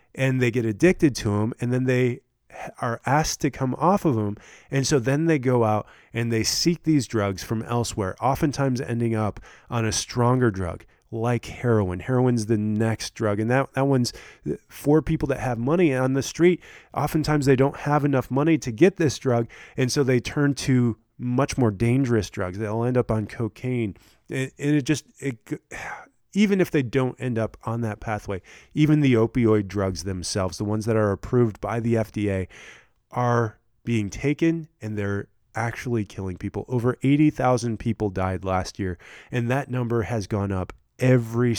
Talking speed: 180 wpm